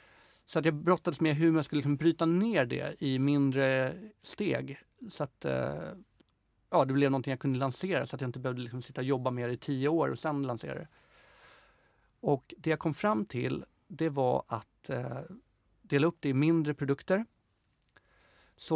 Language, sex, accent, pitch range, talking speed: English, male, Swedish, 135-165 Hz, 185 wpm